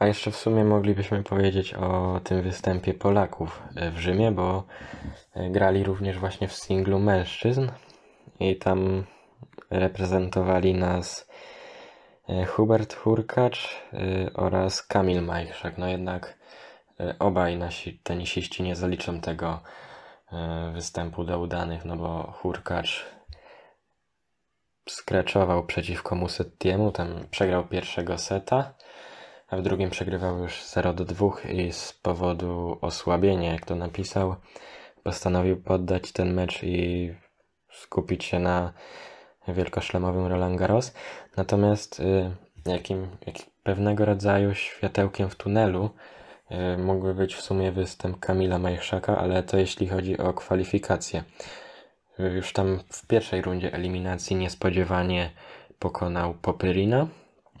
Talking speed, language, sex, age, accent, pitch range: 110 wpm, Polish, male, 20-39, native, 90-95 Hz